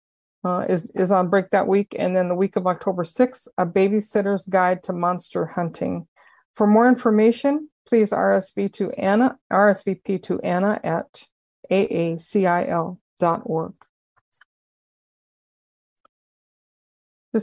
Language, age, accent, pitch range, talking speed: English, 50-69, American, 175-210 Hz, 105 wpm